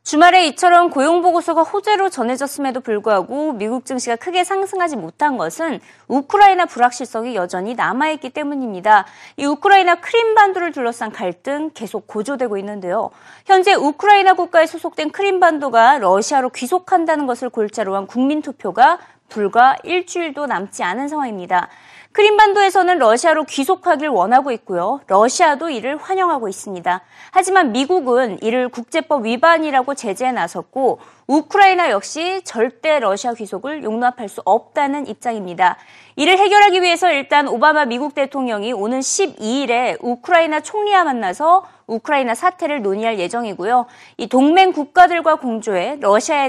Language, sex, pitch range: Korean, female, 230-345 Hz